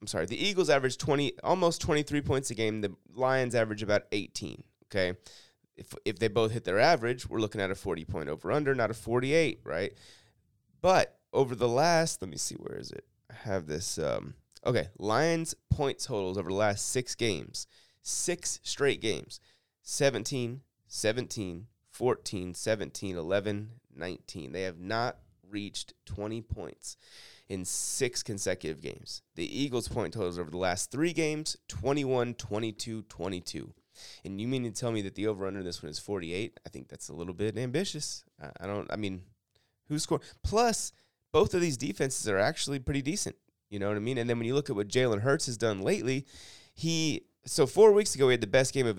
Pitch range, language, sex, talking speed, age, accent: 100-130 Hz, English, male, 185 wpm, 30-49, American